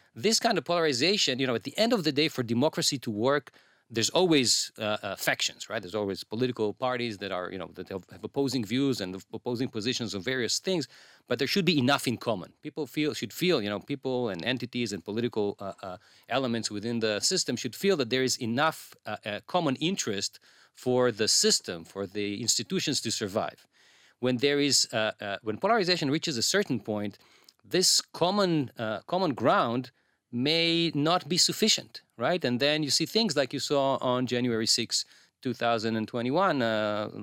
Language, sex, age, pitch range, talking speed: English, male, 40-59, 115-170 Hz, 185 wpm